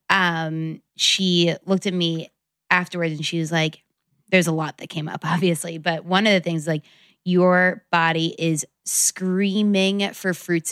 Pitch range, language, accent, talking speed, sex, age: 165-190 Hz, English, American, 160 wpm, female, 20-39